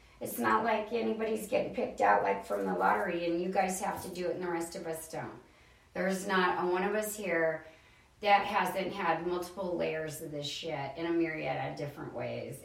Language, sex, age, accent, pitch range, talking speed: English, female, 40-59, American, 165-240 Hz, 215 wpm